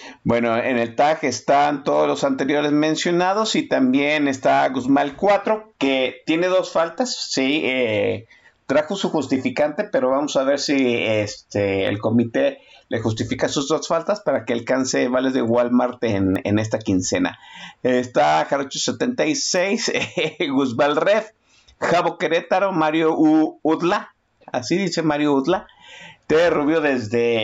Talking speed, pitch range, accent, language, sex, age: 135 wpm, 120-185 Hz, Mexican, Spanish, male, 50-69